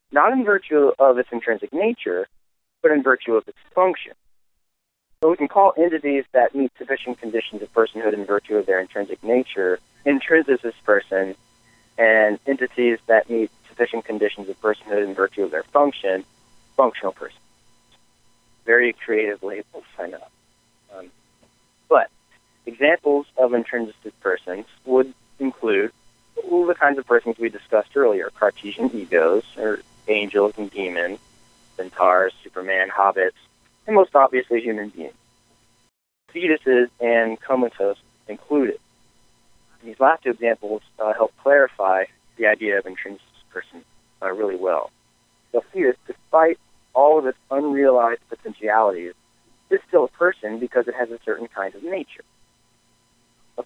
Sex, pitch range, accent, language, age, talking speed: male, 110-145 Hz, American, English, 40-59, 140 wpm